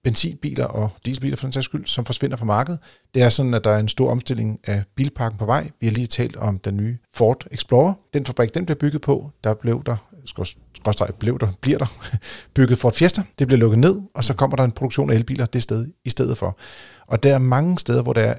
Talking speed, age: 255 wpm, 40-59